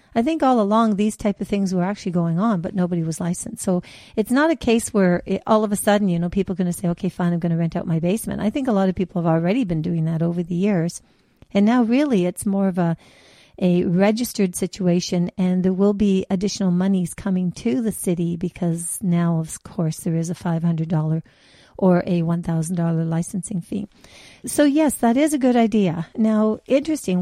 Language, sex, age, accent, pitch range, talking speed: English, female, 50-69, American, 175-210 Hz, 215 wpm